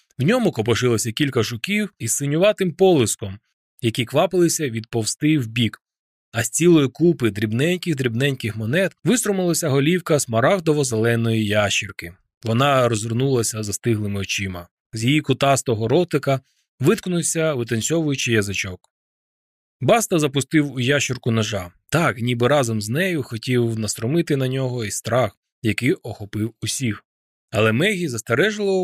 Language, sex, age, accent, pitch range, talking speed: Ukrainian, male, 20-39, native, 110-150 Hz, 115 wpm